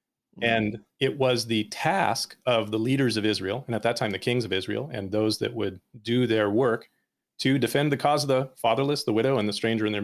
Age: 30-49